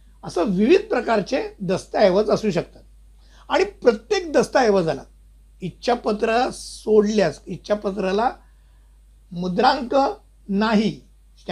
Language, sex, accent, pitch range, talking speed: Hindi, male, native, 185-240 Hz, 65 wpm